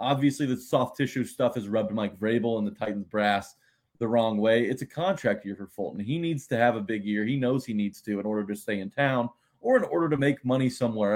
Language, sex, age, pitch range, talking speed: English, male, 30-49, 115-145 Hz, 255 wpm